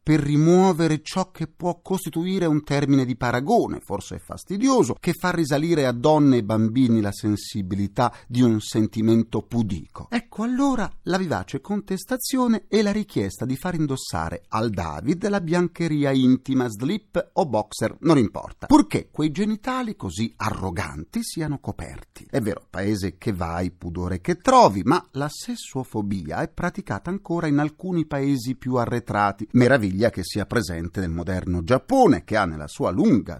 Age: 40-59